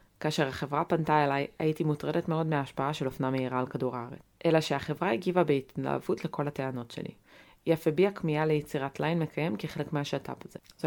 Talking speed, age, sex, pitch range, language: 175 wpm, 20-39, female, 130-160 Hz, Hebrew